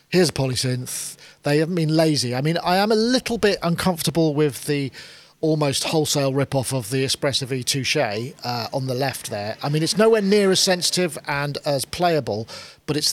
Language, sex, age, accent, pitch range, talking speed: English, male, 40-59, British, 125-160 Hz, 185 wpm